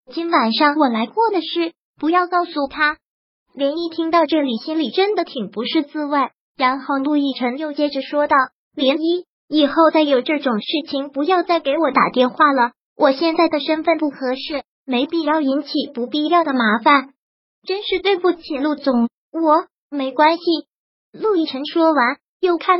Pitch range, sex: 270-330 Hz, male